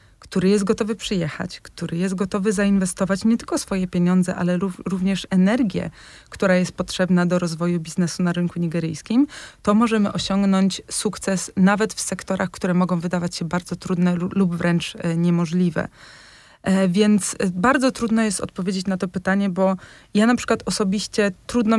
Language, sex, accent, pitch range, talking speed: Polish, female, native, 175-200 Hz, 150 wpm